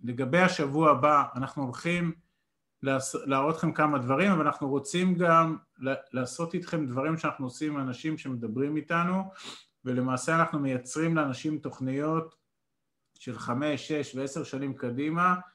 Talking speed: 125 wpm